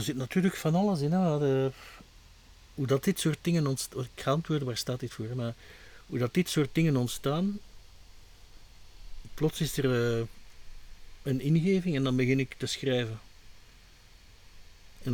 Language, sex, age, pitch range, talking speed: Dutch, male, 50-69, 95-135 Hz, 165 wpm